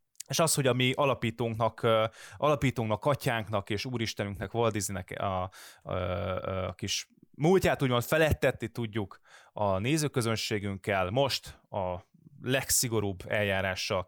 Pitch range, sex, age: 100-135 Hz, male, 20-39